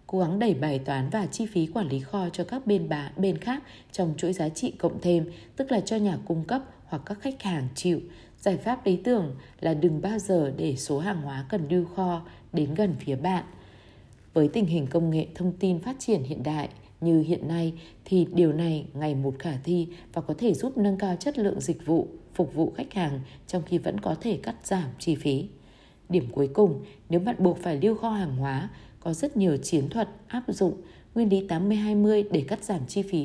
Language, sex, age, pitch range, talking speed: Vietnamese, female, 20-39, 155-205 Hz, 220 wpm